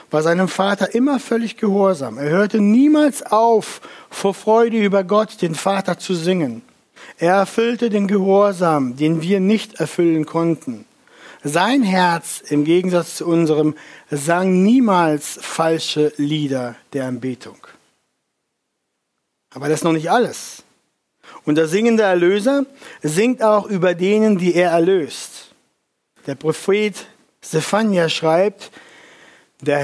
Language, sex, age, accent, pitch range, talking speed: German, male, 60-79, German, 165-210 Hz, 125 wpm